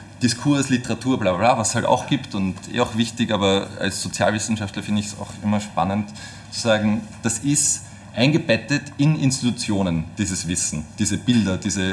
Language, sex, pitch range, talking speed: German, male, 100-125 Hz, 175 wpm